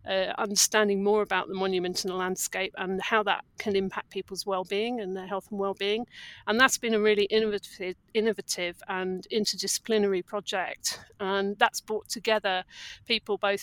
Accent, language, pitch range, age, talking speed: British, English, 190-215 Hz, 50-69, 165 wpm